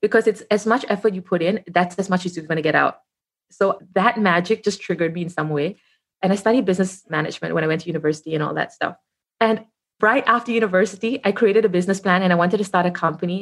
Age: 20-39